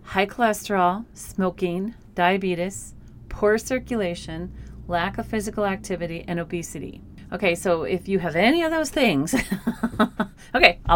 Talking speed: 125 wpm